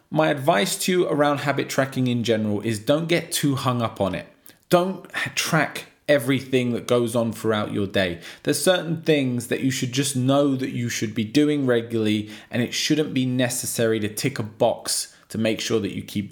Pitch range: 110-140 Hz